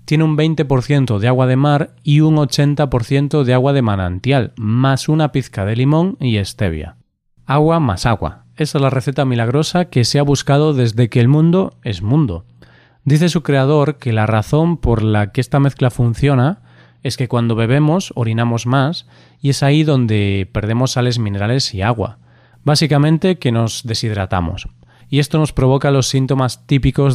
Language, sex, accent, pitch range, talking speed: Spanish, male, Spanish, 110-145 Hz, 170 wpm